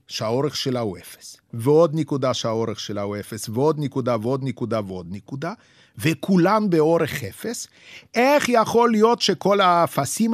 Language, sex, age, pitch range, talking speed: Hebrew, male, 50-69, 130-185 Hz, 140 wpm